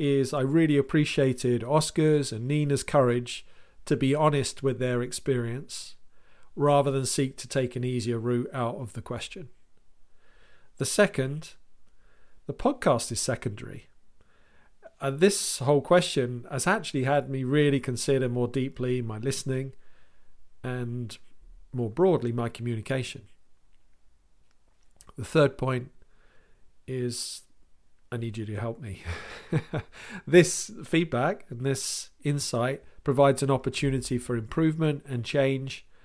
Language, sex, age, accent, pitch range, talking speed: English, male, 40-59, British, 120-145 Hz, 120 wpm